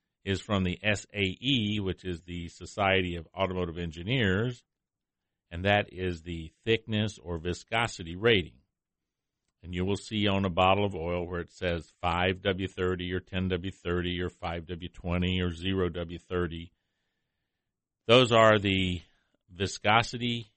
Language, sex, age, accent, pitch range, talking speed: English, male, 50-69, American, 90-105 Hz, 125 wpm